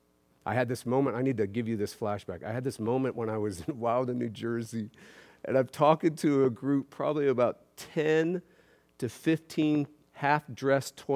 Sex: male